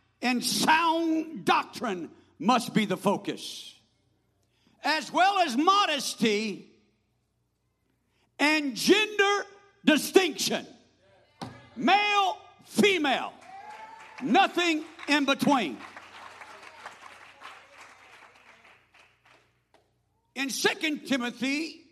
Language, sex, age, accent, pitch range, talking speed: English, male, 60-79, American, 265-370 Hz, 60 wpm